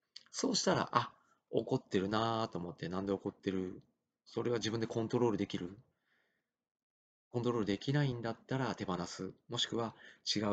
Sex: male